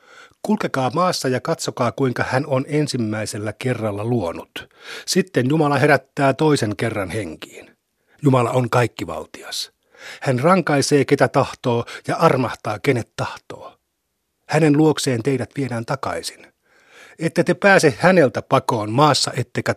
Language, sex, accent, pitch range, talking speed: Finnish, male, native, 115-150 Hz, 120 wpm